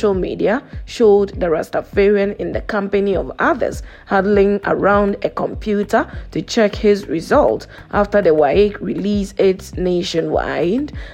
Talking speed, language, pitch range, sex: 130 wpm, English, 195-210 Hz, female